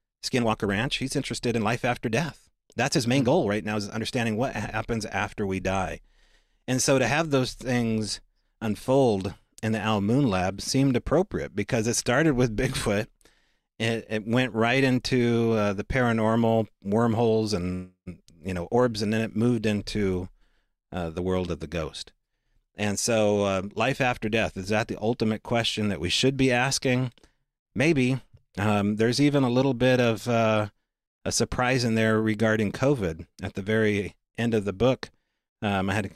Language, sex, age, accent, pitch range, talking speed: English, male, 40-59, American, 95-120 Hz, 175 wpm